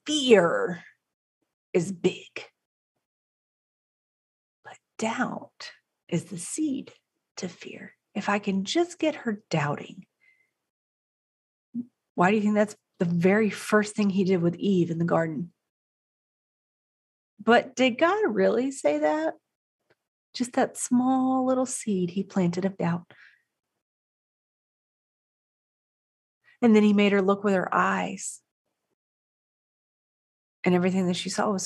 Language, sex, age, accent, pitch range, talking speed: English, female, 30-49, American, 180-245 Hz, 120 wpm